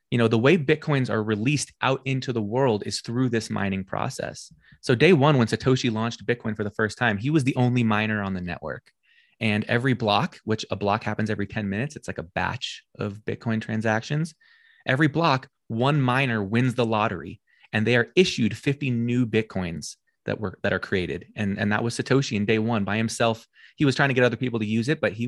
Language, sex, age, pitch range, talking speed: English, male, 20-39, 105-130 Hz, 220 wpm